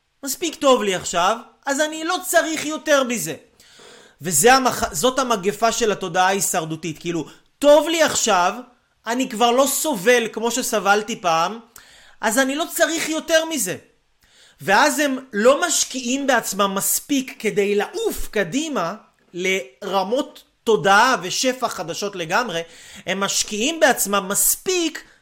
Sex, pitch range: male, 185-260 Hz